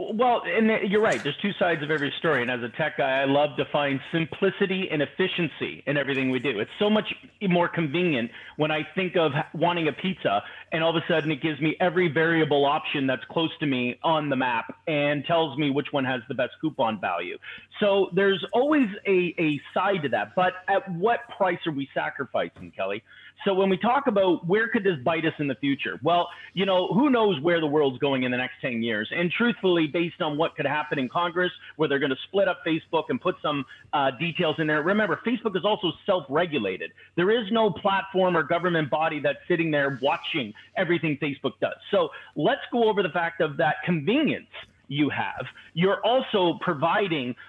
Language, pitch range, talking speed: English, 150-205 Hz, 210 wpm